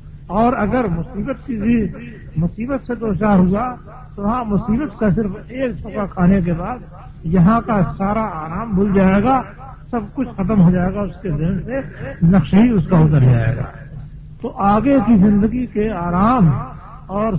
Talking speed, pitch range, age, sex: 170 wpm, 175-215 Hz, 50-69, male